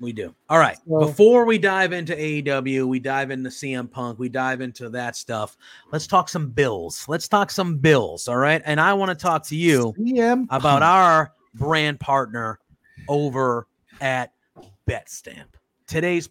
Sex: male